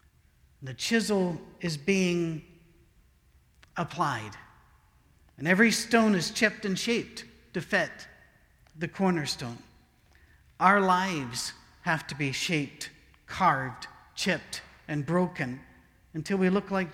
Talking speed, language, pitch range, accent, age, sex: 105 wpm, English, 155-200 Hz, American, 50-69, male